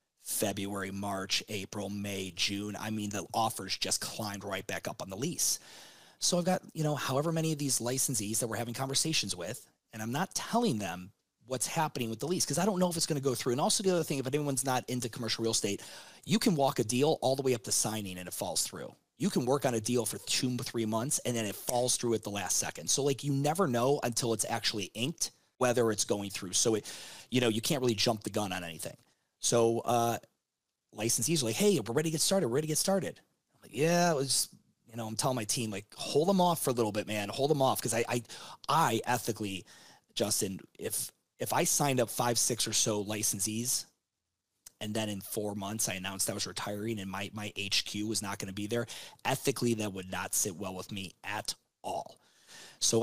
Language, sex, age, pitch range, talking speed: English, male, 30-49, 105-135 Hz, 240 wpm